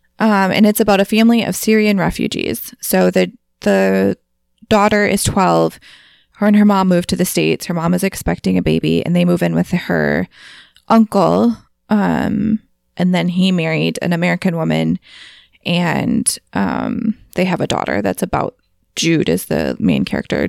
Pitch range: 160-220 Hz